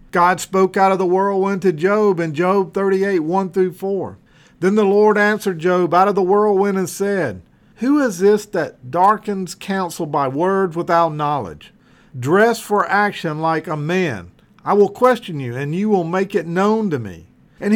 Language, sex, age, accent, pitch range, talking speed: English, male, 50-69, American, 180-220 Hz, 175 wpm